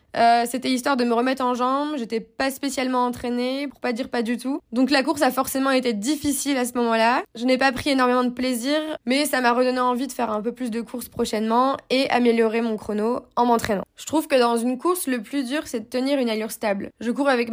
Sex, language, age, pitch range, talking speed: female, French, 20-39, 230-265 Hz, 250 wpm